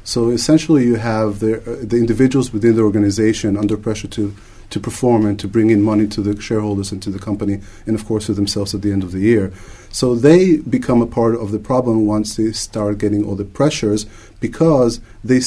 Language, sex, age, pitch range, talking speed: English, male, 30-49, 105-120 Hz, 215 wpm